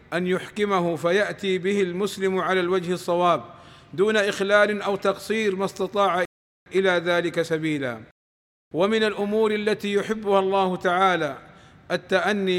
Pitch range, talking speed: 170-200 Hz, 115 wpm